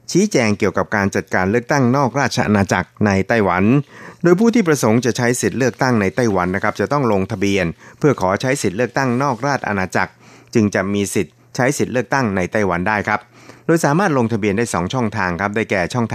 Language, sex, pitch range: Thai, male, 95-120 Hz